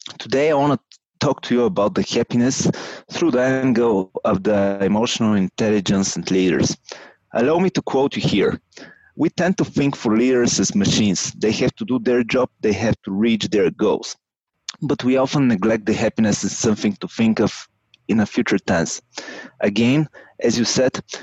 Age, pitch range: 30-49, 110-140 Hz